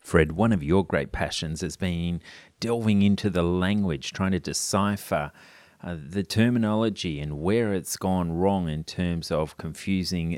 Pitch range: 85-105 Hz